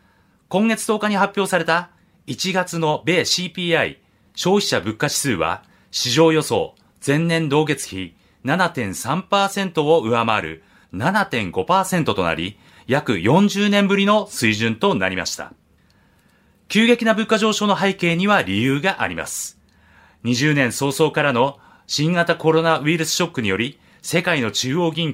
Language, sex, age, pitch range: Japanese, male, 30-49, 115-180 Hz